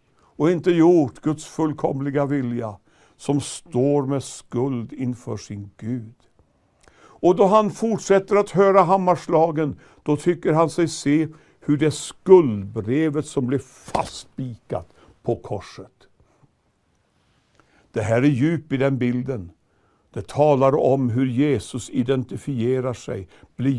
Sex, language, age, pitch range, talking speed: male, Swedish, 60-79, 125-170 Hz, 120 wpm